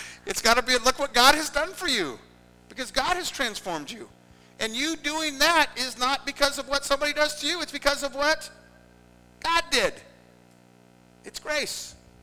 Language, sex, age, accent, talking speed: English, male, 50-69, American, 180 wpm